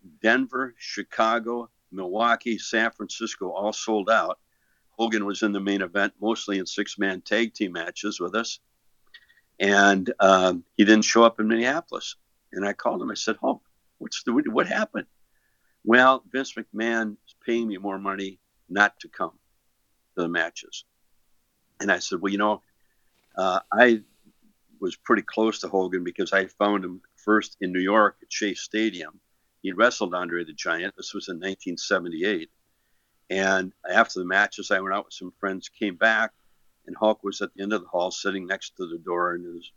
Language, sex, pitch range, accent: English, male, 95-110 Hz, American